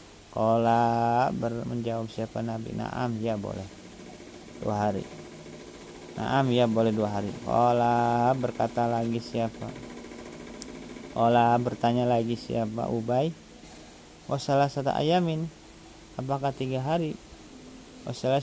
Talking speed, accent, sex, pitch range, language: 100 wpm, native, male, 110-120 Hz, Indonesian